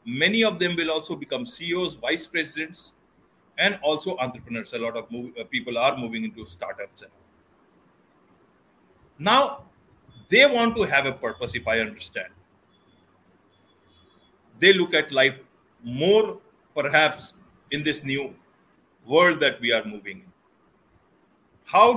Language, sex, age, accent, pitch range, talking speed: English, male, 40-59, Indian, 140-195 Hz, 130 wpm